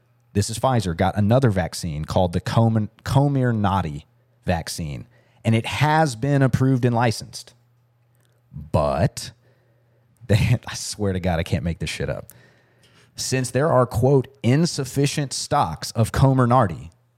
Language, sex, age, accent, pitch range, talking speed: English, male, 30-49, American, 115-140 Hz, 135 wpm